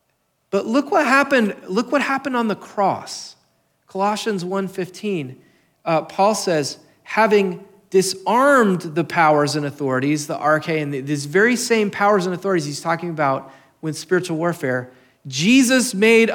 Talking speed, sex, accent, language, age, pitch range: 140 wpm, male, American, English, 40-59, 165-240 Hz